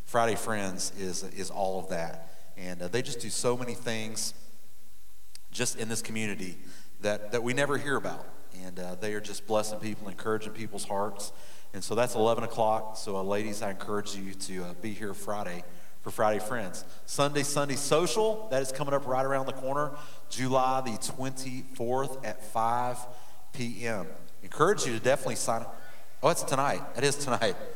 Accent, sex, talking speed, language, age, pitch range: American, male, 180 wpm, English, 40-59, 100-130 Hz